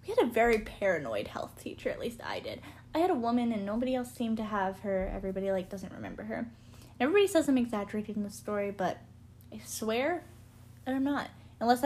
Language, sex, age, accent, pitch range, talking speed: English, female, 10-29, American, 205-250 Hz, 200 wpm